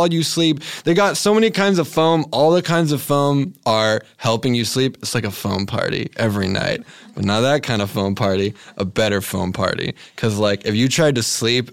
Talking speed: 220 wpm